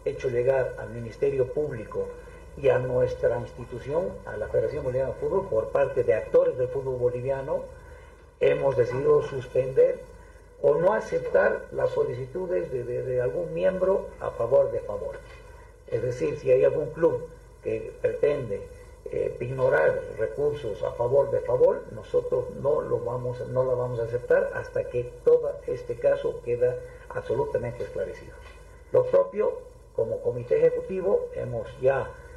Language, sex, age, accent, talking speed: Spanish, male, 50-69, Mexican, 140 wpm